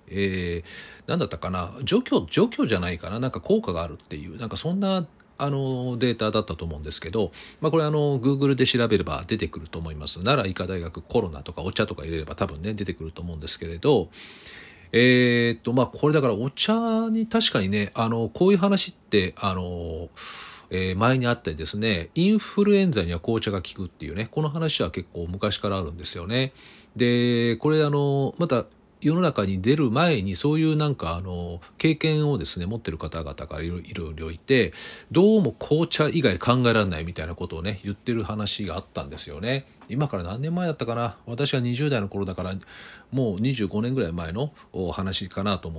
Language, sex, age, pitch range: Japanese, male, 40-59, 90-145 Hz